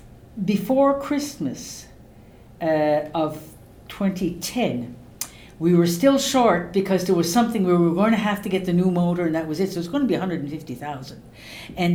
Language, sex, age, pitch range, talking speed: English, female, 60-79, 150-175 Hz, 180 wpm